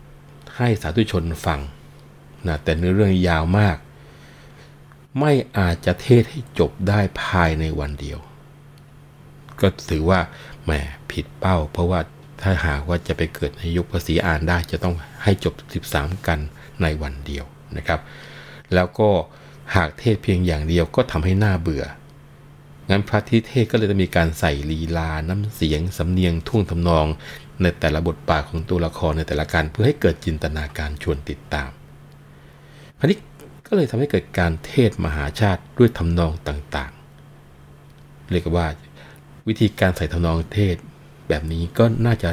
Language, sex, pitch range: Thai, male, 75-100 Hz